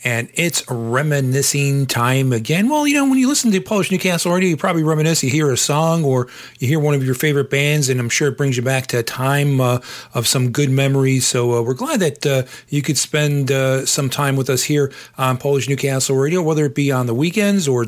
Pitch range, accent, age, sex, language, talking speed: 125-150 Hz, American, 40-59, male, English, 240 wpm